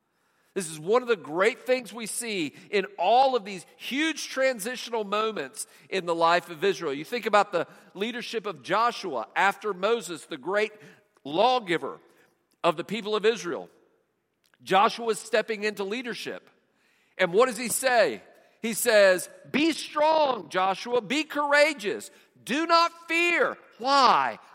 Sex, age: male, 50-69